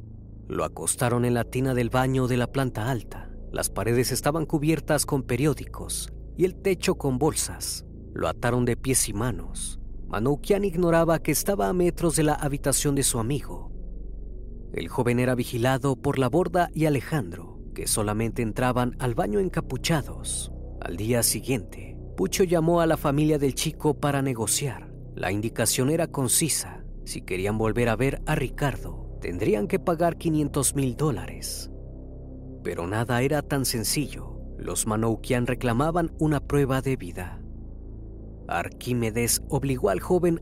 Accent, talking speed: Mexican, 150 wpm